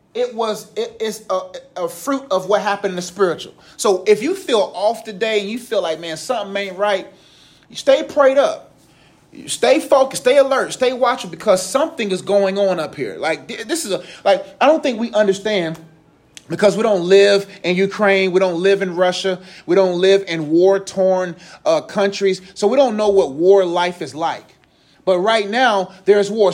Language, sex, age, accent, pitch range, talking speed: English, male, 30-49, American, 190-255 Hz, 200 wpm